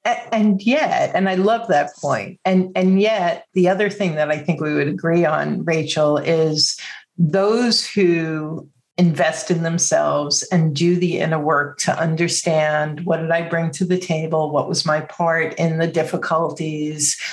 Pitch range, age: 155-190 Hz, 50-69